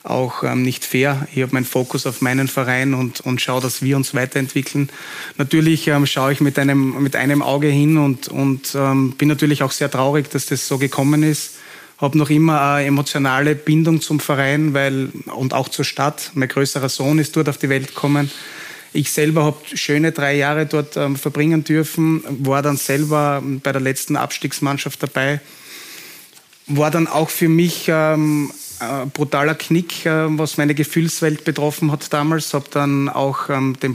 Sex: male